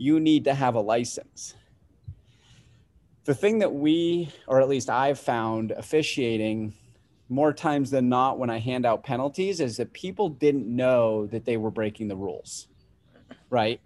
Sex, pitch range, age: male, 120-155 Hz, 30-49